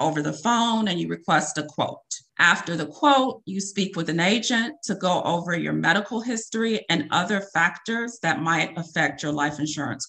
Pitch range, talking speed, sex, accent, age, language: 165-225 Hz, 185 wpm, female, American, 40-59, English